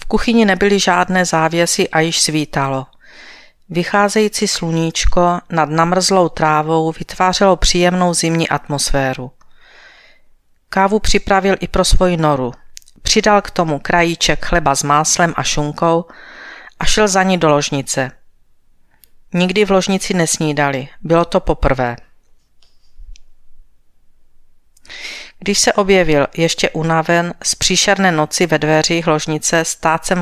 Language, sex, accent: Czech, female, native